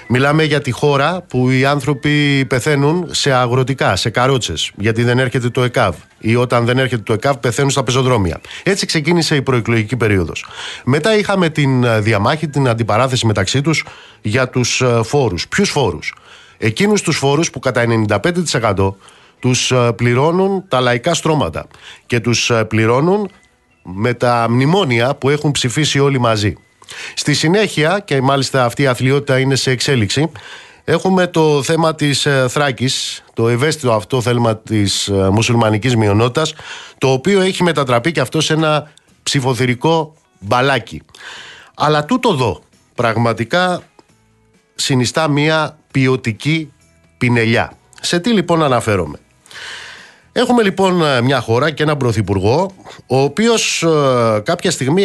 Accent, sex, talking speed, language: native, male, 130 wpm, Greek